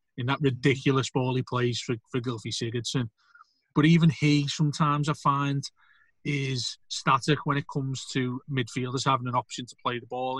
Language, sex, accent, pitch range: English, male, British, 120-140 Hz